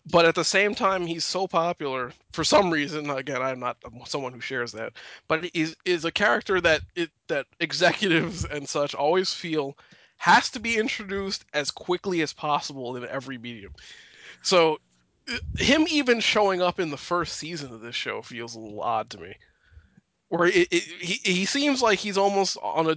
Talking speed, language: 185 wpm, English